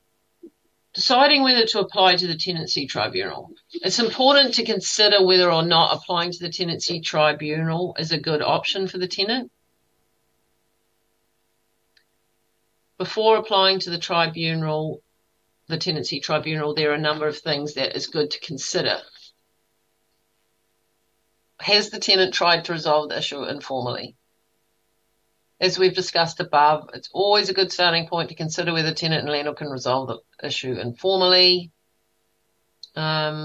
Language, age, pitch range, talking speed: English, 50-69, 135-180 Hz, 140 wpm